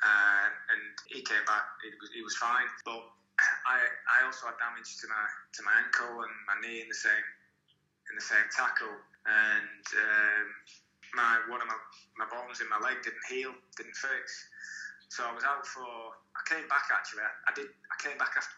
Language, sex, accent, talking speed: English, male, British, 195 wpm